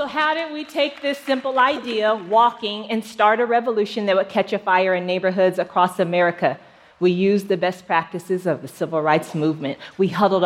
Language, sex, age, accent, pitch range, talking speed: English, female, 30-49, American, 175-205 Hz, 195 wpm